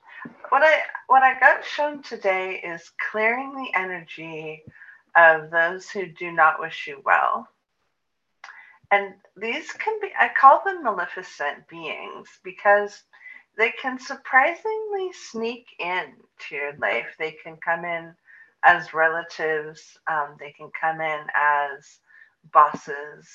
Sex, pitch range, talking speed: female, 160-255 Hz, 125 wpm